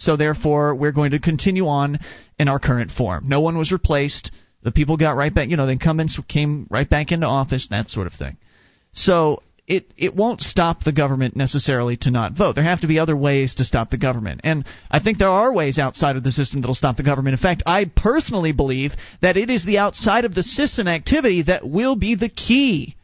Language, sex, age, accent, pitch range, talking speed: English, male, 40-59, American, 135-185 Hz, 230 wpm